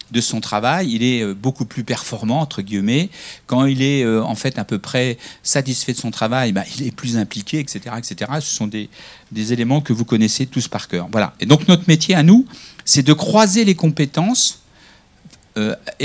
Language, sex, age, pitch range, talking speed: French, male, 50-69, 120-165 Hz, 200 wpm